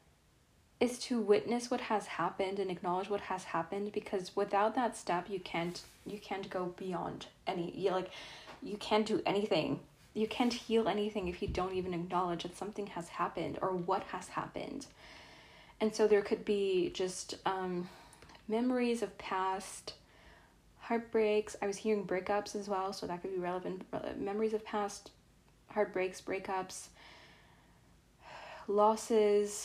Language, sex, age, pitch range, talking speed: English, female, 10-29, 190-220 Hz, 150 wpm